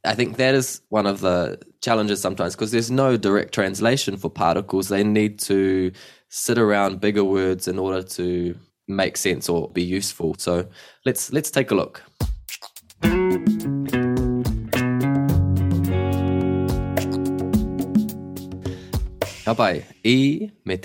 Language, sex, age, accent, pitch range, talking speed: English, male, 20-39, Australian, 95-115 Hz, 110 wpm